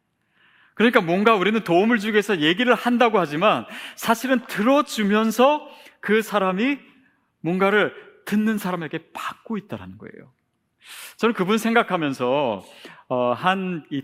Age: 40-59